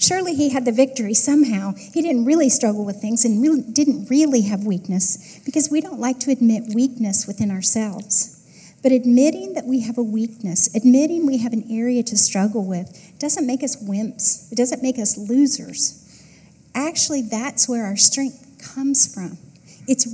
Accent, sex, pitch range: American, female, 205-265 Hz